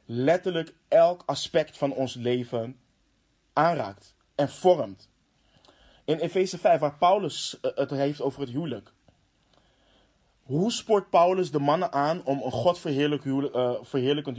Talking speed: 125 wpm